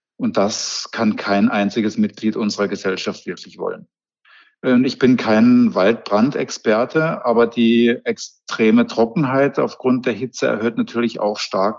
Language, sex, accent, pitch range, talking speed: German, male, German, 110-125 Hz, 125 wpm